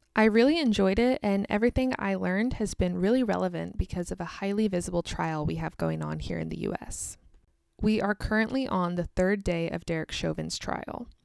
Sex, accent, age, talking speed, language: female, American, 20-39, 195 wpm, English